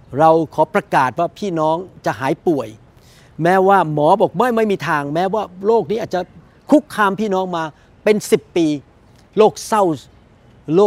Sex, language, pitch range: male, Thai, 155-200 Hz